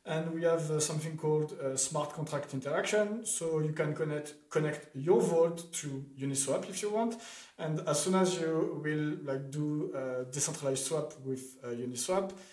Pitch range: 135-165 Hz